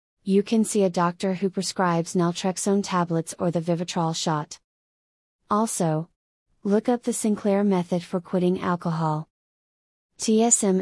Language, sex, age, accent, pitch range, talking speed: English, female, 30-49, American, 175-200 Hz, 130 wpm